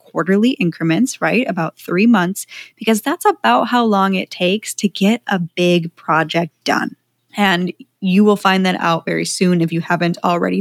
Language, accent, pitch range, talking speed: English, American, 175-220 Hz, 175 wpm